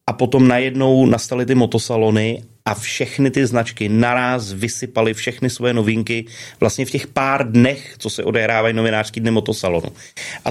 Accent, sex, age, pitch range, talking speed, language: native, male, 30-49, 110-130 Hz, 155 wpm, Czech